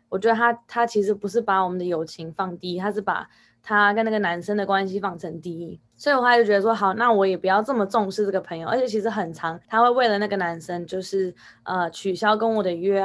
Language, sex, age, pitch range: Chinese, female, 20-39, 185-230 Hz